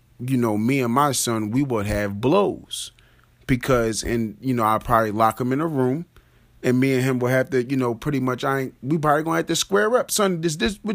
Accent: American